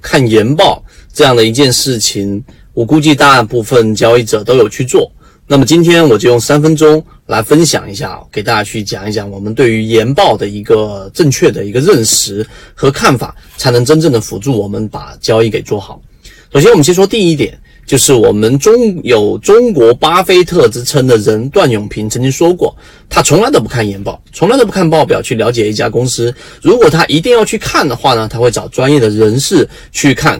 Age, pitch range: 30-49, 115-160 Hz